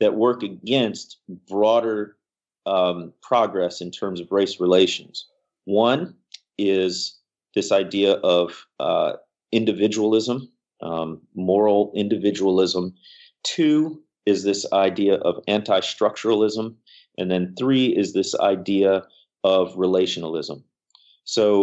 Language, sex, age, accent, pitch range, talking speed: English, male, 30-49, American, 95-130 Hz, 100 wpm